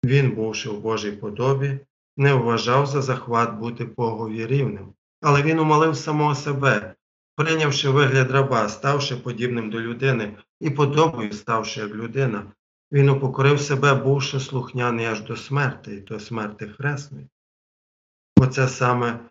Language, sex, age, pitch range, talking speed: Ukrainian, male, 40-59, 110-140 Hz, 135 wpm